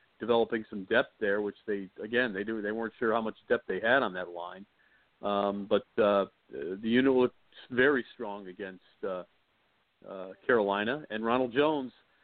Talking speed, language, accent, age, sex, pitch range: 170 wpm, English, American, 50-69, male, 105-130 Hz